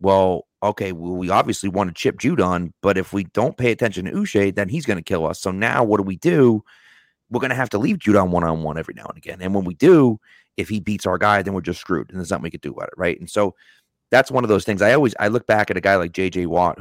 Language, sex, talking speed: English, male, 295 wpm